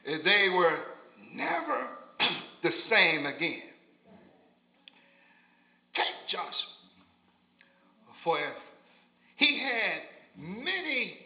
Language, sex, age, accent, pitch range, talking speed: English, male, 50-69, American, 190-300 Hz, 70 wpm